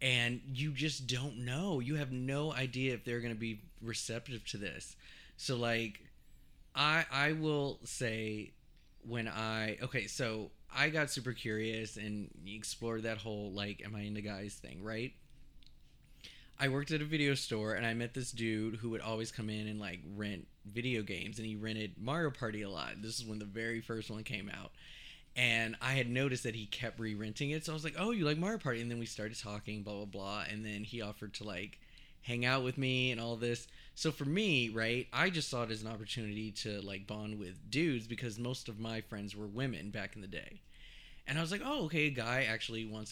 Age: 20-39